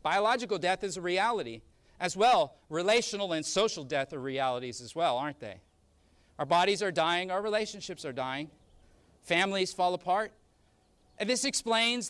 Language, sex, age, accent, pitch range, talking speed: English, male, 40-59, American, 195-230 Hz, 155 wpm